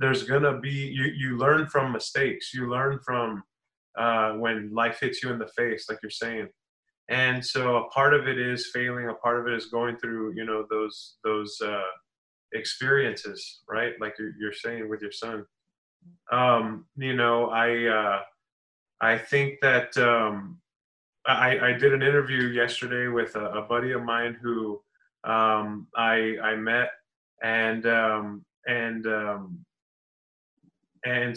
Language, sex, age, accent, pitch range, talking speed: English, male, 20-39, American, 115-125 Hz, 155 wpm